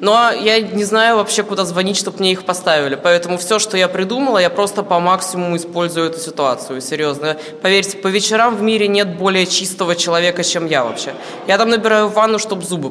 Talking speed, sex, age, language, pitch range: 195 wpm, female, 20-39, Russian, 170-210 Hz